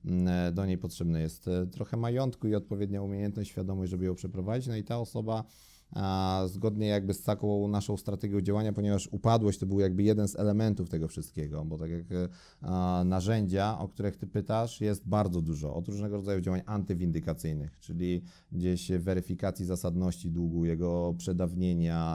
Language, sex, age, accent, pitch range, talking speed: Polish, male, 30-49, native, 90-105 Hz, 155 wpm